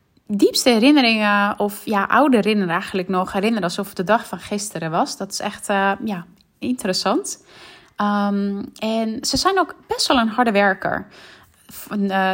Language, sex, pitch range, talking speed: Dutch, female, 190-245 Hz, 160 wpm